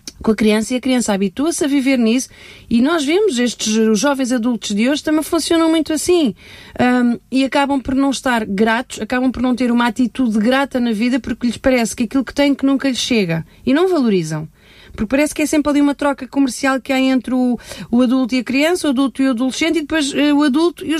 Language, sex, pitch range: Portuguese, female, 225-285 Hz